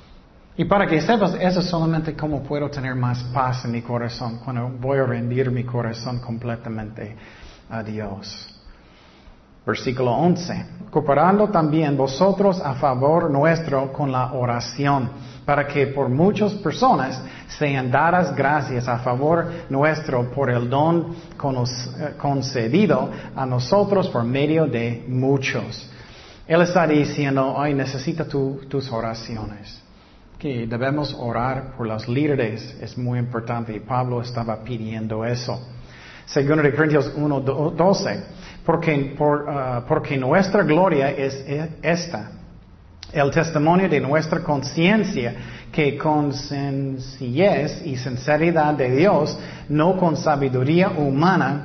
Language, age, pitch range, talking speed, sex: Spanish, 40-59, 125-160 Hz, 120 wpm, male